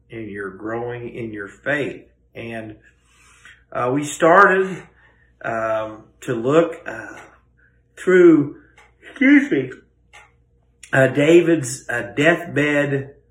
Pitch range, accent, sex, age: 100-140 Hz, American, male, 50-69